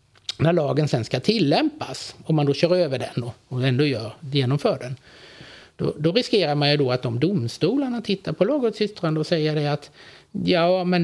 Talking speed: 185 wpm